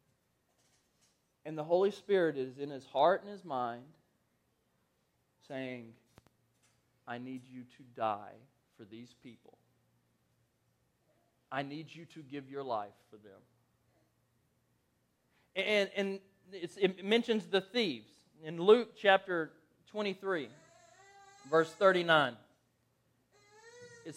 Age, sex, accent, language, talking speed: 40-59, male, American, English, 105 wpm